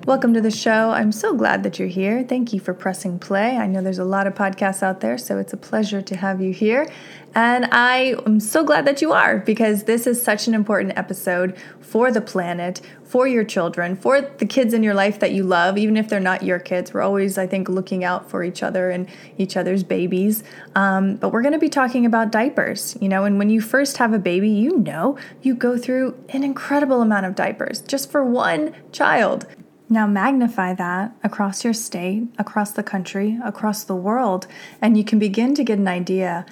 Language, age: English, 20-39